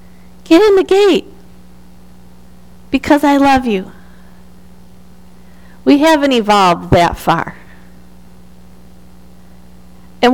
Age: 50-69